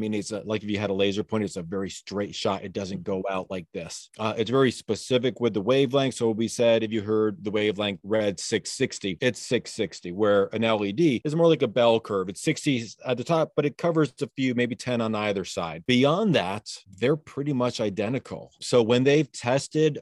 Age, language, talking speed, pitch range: 40-59, English, 225 wpm, 105-135 Hz